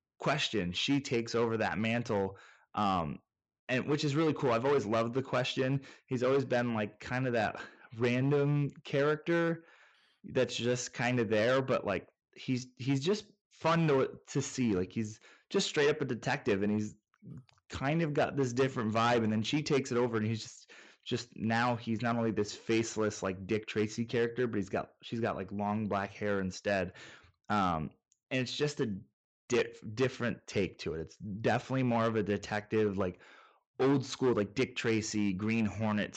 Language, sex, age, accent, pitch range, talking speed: English, male, 20-39, American, 105-130 Hz, 180 wpm